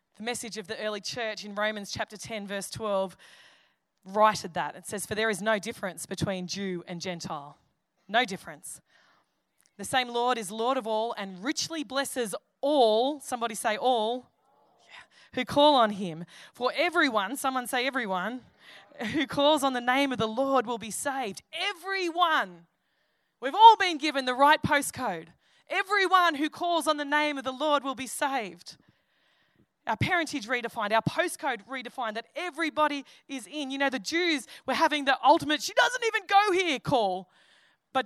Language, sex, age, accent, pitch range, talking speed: English, female, 20-39, Australian, 205-280 Hz, 170 wpm